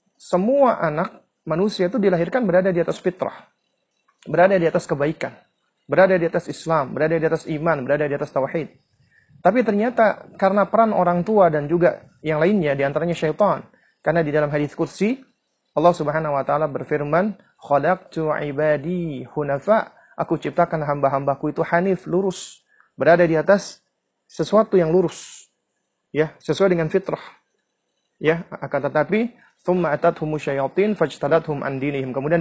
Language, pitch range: Indonesian, 150-195 Hz